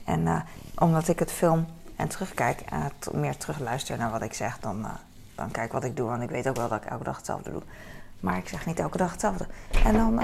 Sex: female